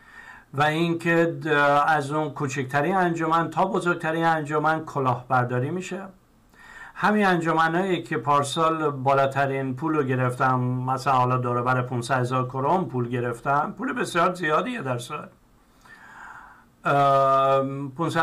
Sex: male